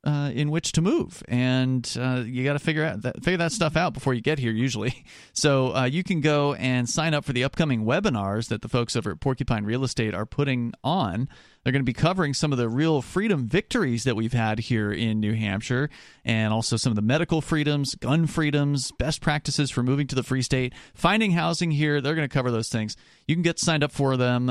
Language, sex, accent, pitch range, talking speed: English, male, American, 115-150 Hz, 235 wpm